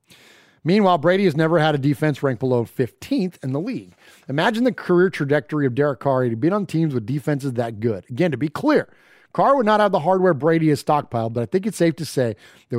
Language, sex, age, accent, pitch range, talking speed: English, male, 30-49, American, 135-190 Hz, 225 wpm